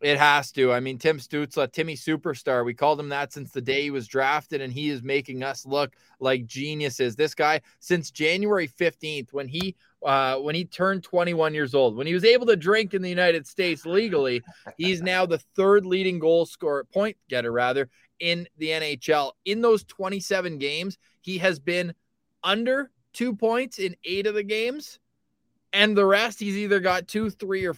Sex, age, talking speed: male, 20-39, 195 wpm